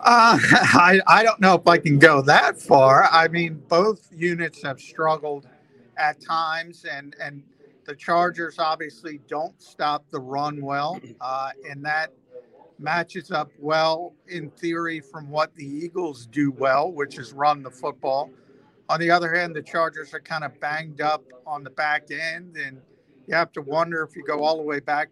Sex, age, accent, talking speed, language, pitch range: male, 50-69, American, 180 wpm, English, 145-165 Hz